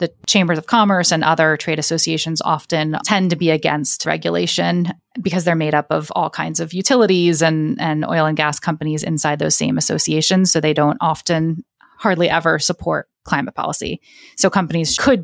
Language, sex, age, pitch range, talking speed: English, female, 30-49, 155-180 Hz, 175 wpm